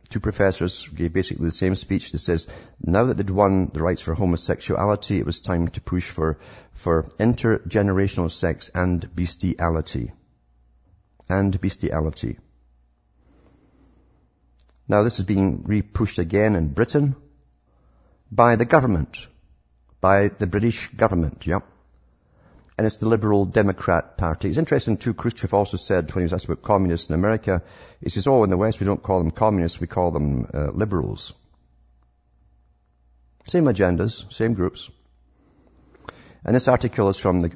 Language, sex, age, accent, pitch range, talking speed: English, male, 50-69, British, 80-105 Hz, 145 wpm